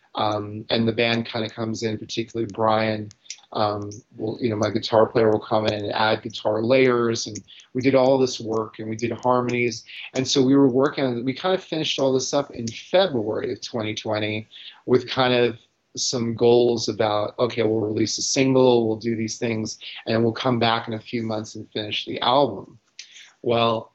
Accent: American